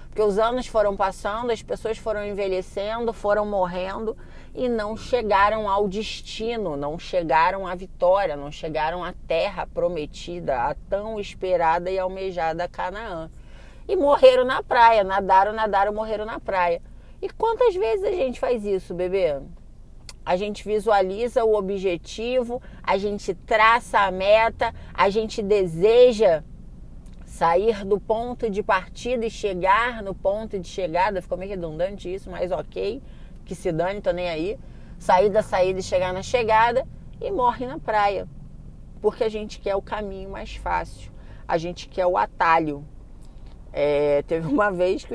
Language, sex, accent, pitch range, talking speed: Portuguese, female, Brazilian, 185-225 Hz, 150 wpm